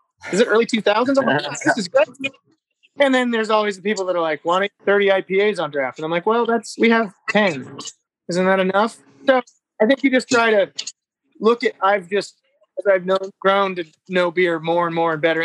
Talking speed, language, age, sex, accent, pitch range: 220 wpm, English, 20-39, male, American, 160-200 Hz